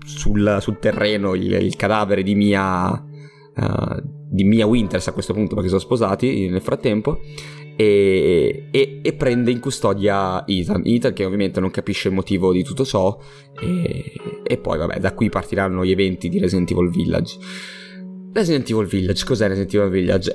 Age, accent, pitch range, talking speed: 20-39, native, 95-125 Hz, 170 wpm